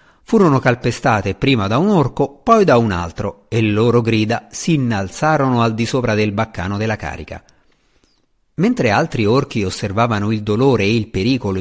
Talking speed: 160 wpm